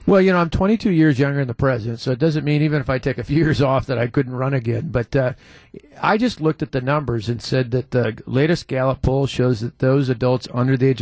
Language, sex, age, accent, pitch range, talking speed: English, male, 40-59, American, 125-145 Hz, 265 wpm